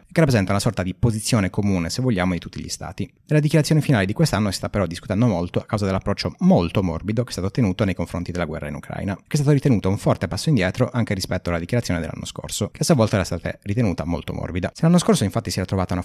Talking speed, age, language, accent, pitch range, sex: 255 wpm, 30-49, Italian, native, 90-120 Hz, male